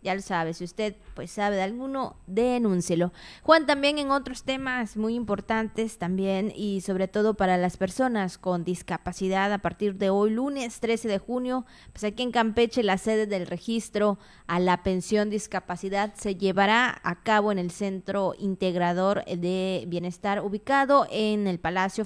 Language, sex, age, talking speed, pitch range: Spanish, female, 20-39, 165 wpm, 185-225 Hz